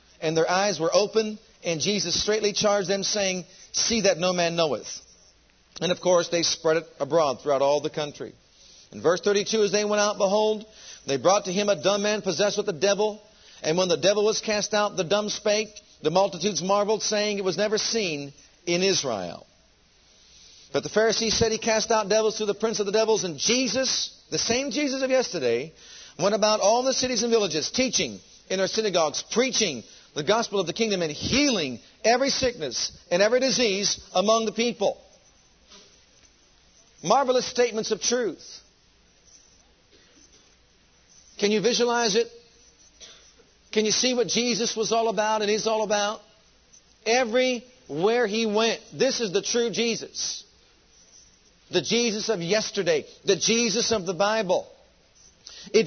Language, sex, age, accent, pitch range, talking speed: English, male, 50-69, American, 190-230 Hz, 165 wpm